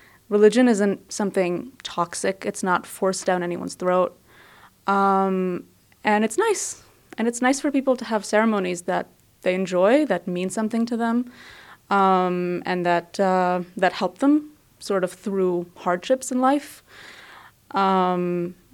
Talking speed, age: 140 wpm, 20-39